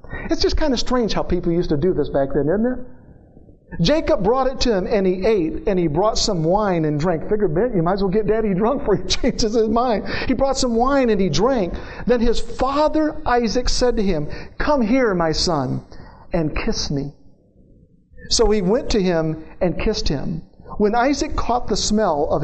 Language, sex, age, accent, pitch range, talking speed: English, male, 50-69, American, 155-235 Hz, 210 wpm